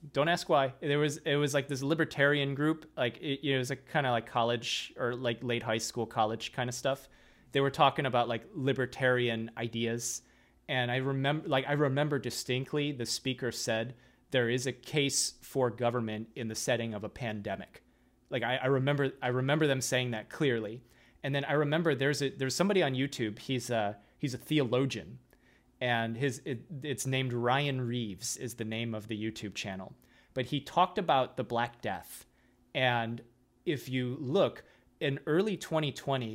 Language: English